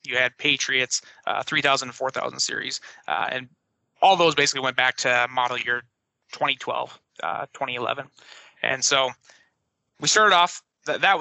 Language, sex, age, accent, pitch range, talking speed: English, male, 30-49, American, 135-160 Hz, 140 wpm